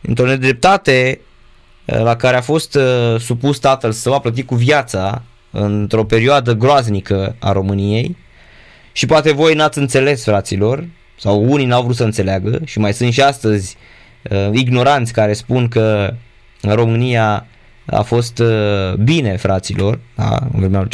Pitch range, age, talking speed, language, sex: 105-135 Hz, 20-39, 145 wpm, Romanian, male